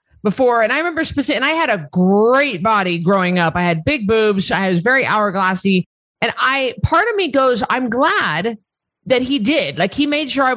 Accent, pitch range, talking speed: American, 200-275 Hz, 210 wpm